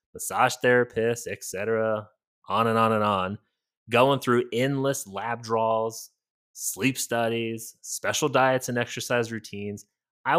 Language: English